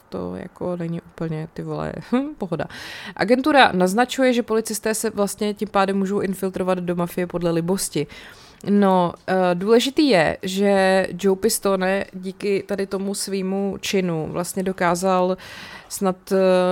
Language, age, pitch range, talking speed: Czech, 20-39, 165-195 Hz, 130 wpm